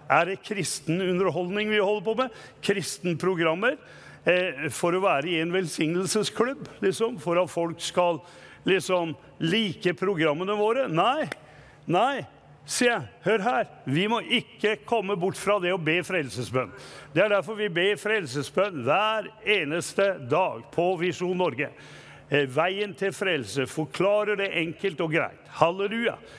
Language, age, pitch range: English, 50-69, 160-215 Hz